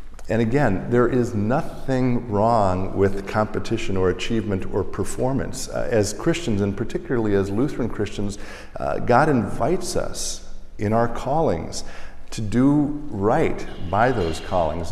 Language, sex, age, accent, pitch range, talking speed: English, male, 50-69, American, 95-120 Hz, 135 wpm